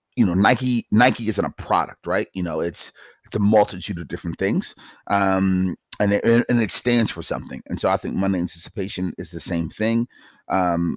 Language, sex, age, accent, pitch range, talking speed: English, male, 30-49, American, 85-100 Hz, 195 wpm